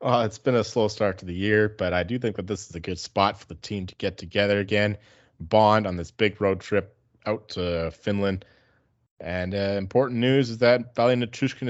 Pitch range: 90-105 Hz